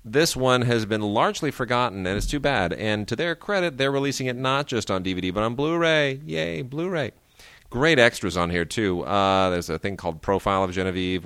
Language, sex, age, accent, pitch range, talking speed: English, male, 30-49, American, 90-120 Hz, 210 wpm